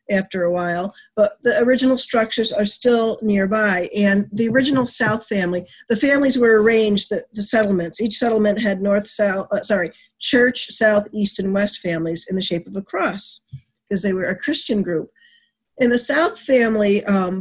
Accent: American